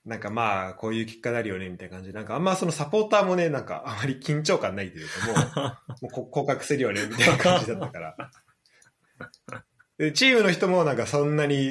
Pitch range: 100-170 Hz